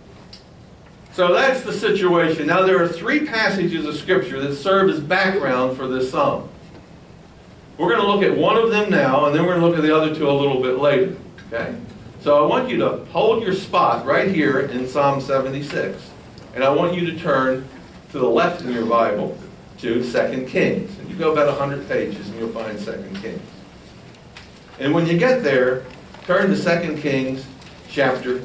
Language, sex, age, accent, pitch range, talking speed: English, male, 60-79, American, 120-170 Hz, 190 wpm